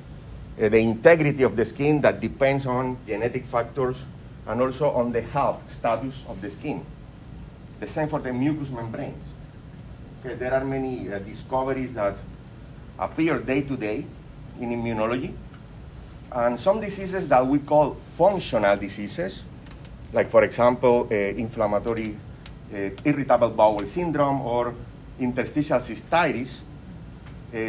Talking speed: 130 wpm